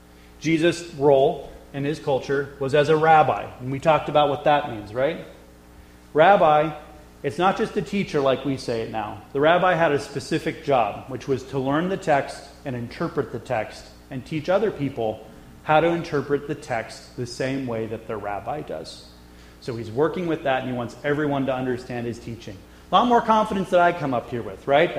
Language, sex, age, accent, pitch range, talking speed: English, male, 30-49, American, 115-155 Hz, 200 wpm